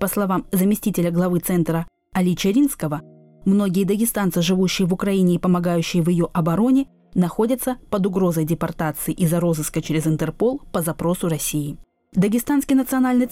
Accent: native